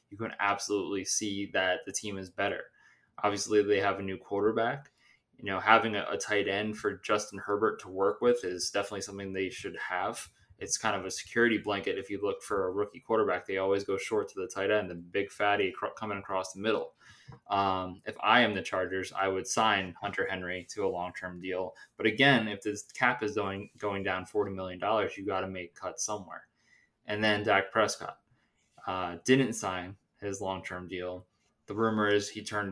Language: English